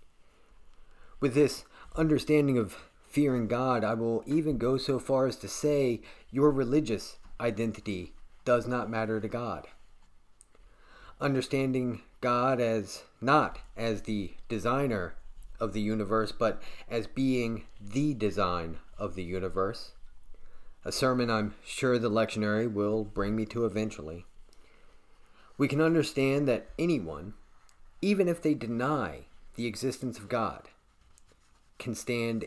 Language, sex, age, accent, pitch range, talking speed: English, male, 30-49, American, 105-135 Hz, 125 wpm